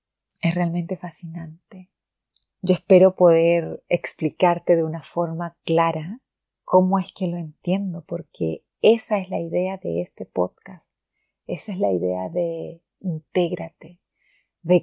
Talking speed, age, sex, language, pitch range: 125 wpm, 30-49, female, Spanish, 165-200 Hz